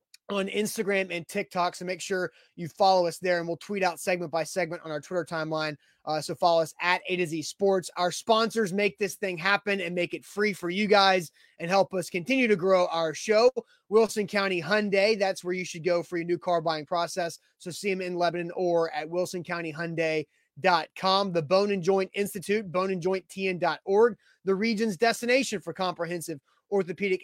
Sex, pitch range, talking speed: male, 175-200 Hz, 190 wpm